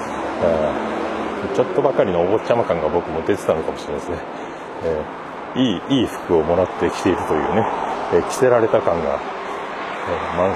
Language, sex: Japanese, male